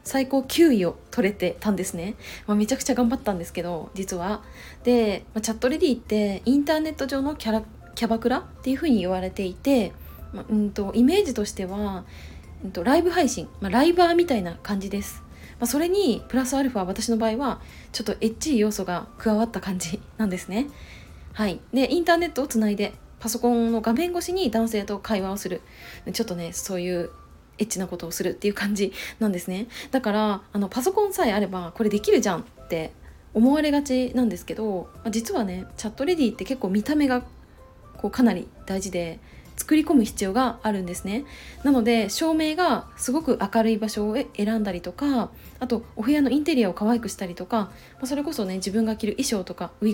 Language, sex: Japanese, female